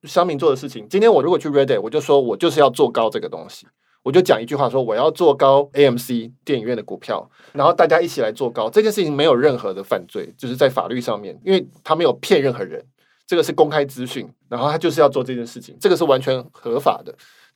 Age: 20-39